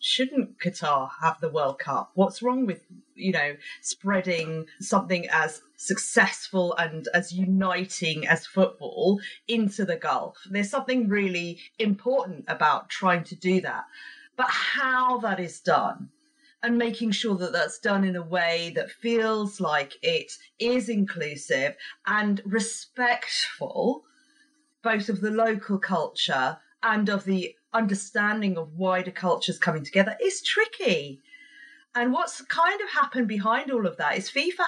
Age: 40-59